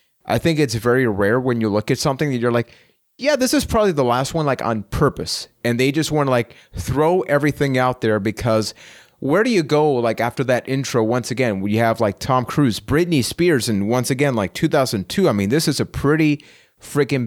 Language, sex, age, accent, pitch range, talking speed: English, male, 30-49, American, 115-150 Hz, 220 wpm